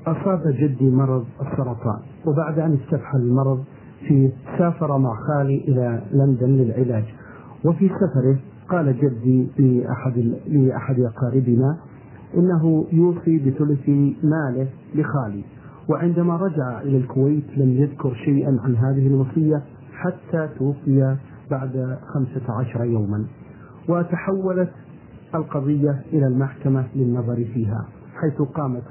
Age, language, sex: 50-69, Arabic, male